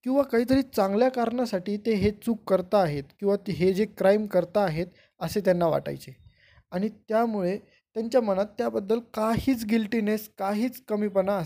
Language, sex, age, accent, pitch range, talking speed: Marathi, male, 20-39, native, 170-220 Hz, 85 wpm